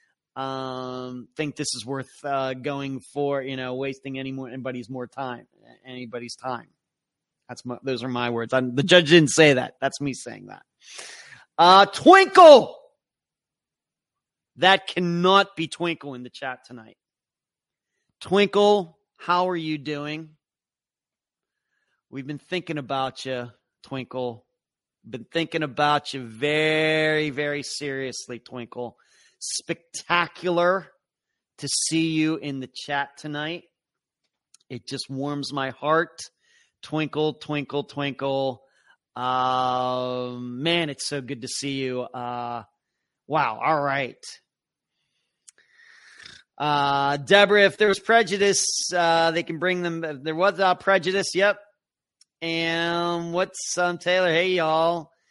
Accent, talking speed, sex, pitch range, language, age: American, 125 wpm, male, 130-175 Hz, English, 30-49